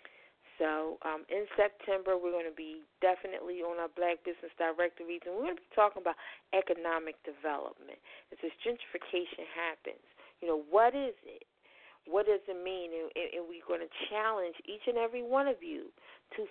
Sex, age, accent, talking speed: female, 40-59, American, 180 wpm